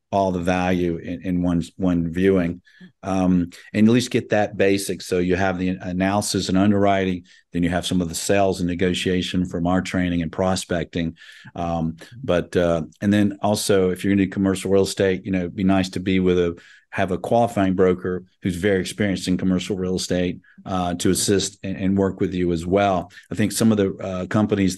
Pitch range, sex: 90-100 Hz, male